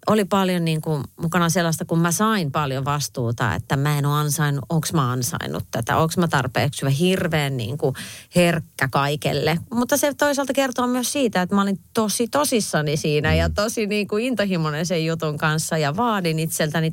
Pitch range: 140-175 Hz